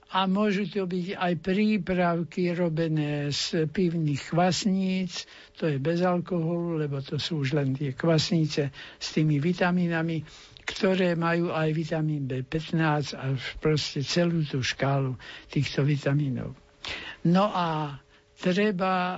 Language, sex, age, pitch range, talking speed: Slovak, male, 60-79, 155-185 Hz, 120 wpm